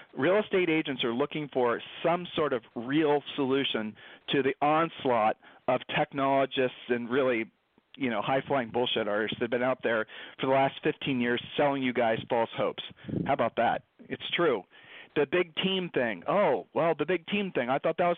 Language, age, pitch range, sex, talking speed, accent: English, 40-59, 130-155 Hz, male, 190 wpm, American